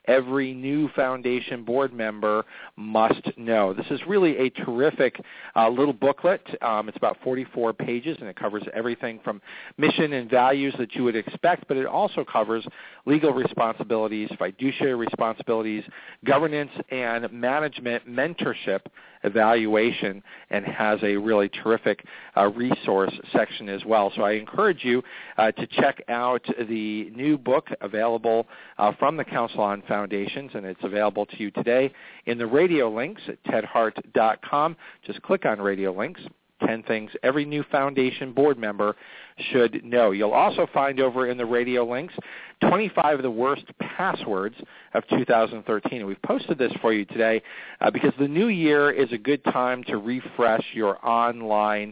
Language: English